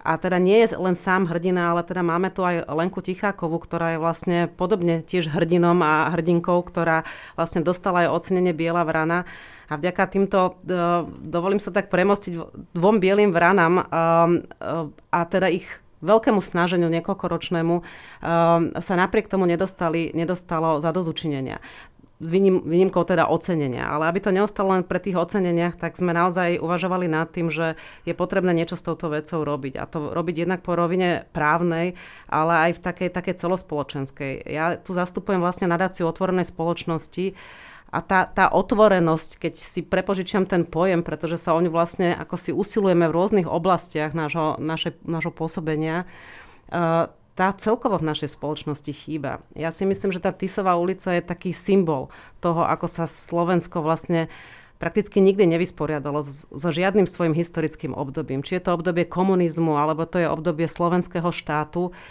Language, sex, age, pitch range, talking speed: Slovak, female, 30-49, 165-185 Hz, 155 wpm